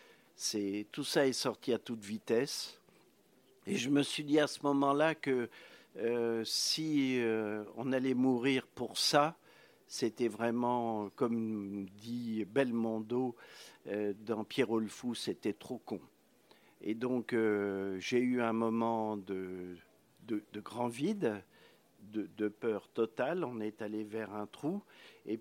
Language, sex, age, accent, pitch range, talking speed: French, male, 50-69, French, 110-135 Hz, 140 wpm